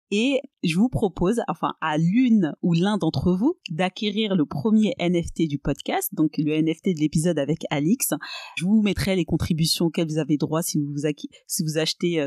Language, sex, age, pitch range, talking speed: French, female, 30-49, 160-200 Hz, 175 wpm